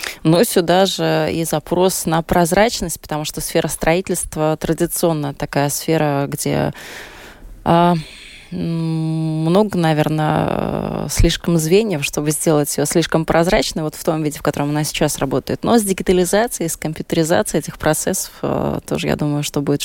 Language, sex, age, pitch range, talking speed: Russian, female, 20-39, 150-180 Hz, 135 wpm